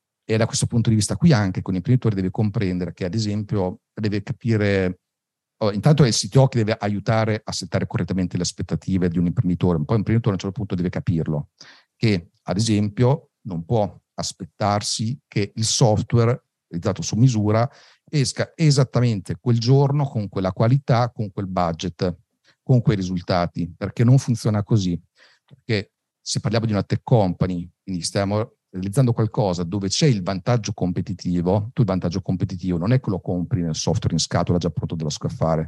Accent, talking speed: native, 175 wpm